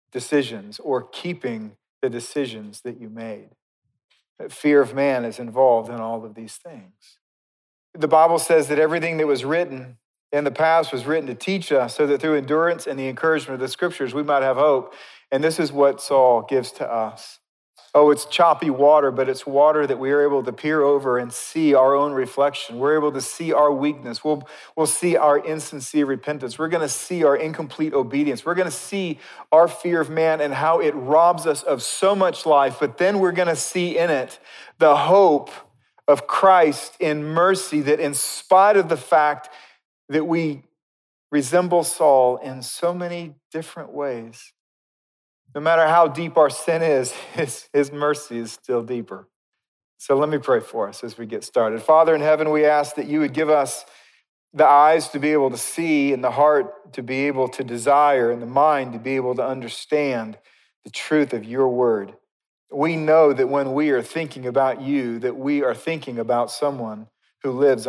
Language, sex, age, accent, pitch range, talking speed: English, male, 40-59, American, 130-160 Hz, 195 wpm